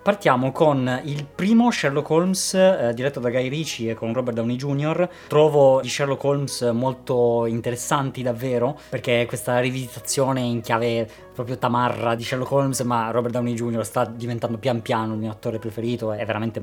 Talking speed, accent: 170 wpm, native